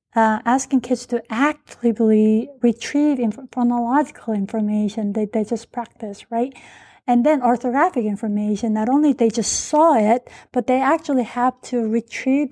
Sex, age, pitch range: female, 30-49, 220-255 Hz